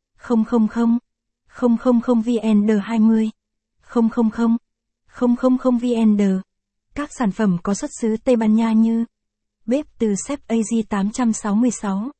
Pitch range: 210-240 Hz